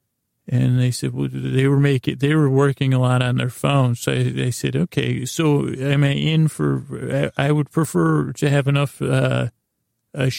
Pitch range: 120-140 Hz